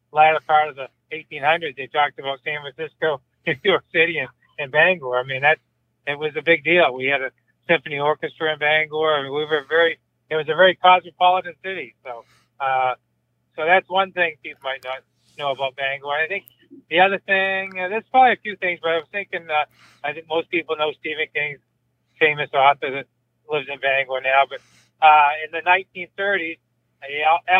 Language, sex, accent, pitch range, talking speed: English, male, American, 140-175 Hz, 200 wpm